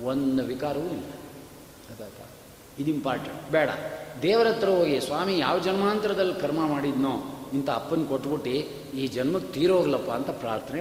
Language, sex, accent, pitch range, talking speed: Kannada, male, native, 145-200 Hz, 90 wpm